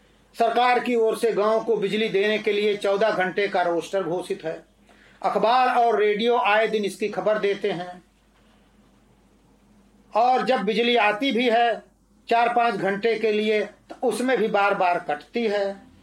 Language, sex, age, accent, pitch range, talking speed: Hindi, male, 40-59, native, 200-240 Hz, 160 wpm